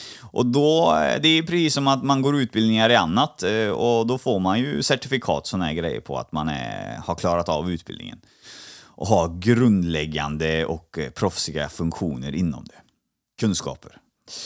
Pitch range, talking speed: 115-155 Hz, 160 wpm